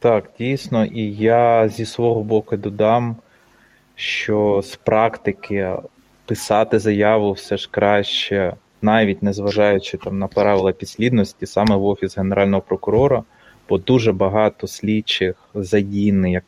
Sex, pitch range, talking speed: male, 95-110 Hz, 115 wpm